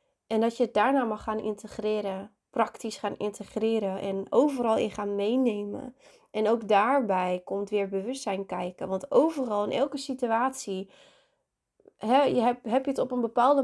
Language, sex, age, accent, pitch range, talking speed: Dutch, female, 20-39, Dutch, 200-245 Hz, 165 wpm